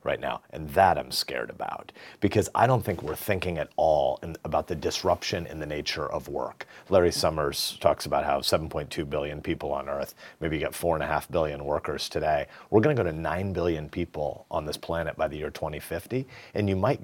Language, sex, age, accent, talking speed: English, male, 40-59, American, 210 wpm